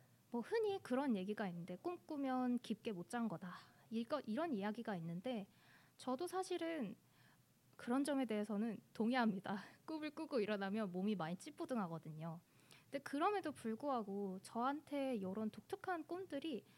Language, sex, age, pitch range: Korean, female, 20-39, 205-280 Hz